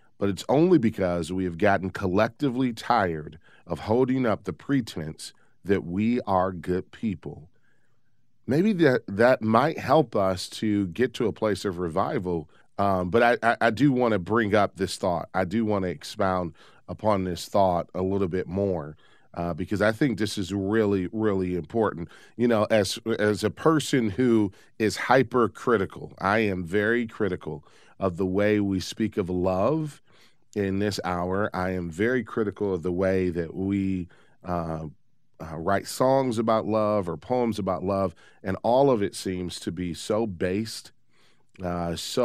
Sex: male